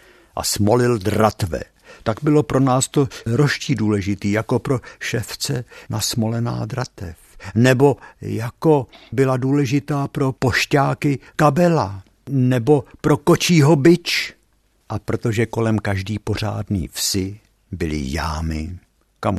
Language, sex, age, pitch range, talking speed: Czech, male, 60-79, 95-130 Hz, 110 wpm